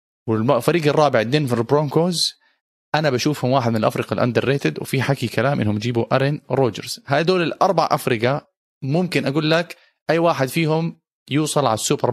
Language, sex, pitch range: Arabic, male, 120-155 Hz